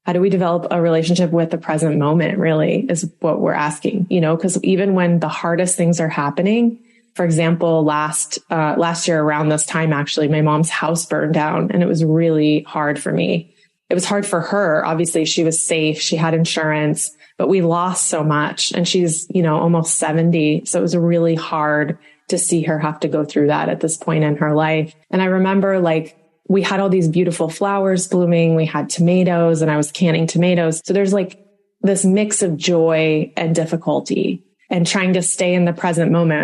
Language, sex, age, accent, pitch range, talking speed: English, female, 20-39, American, 155-180 Hz, 205 wpm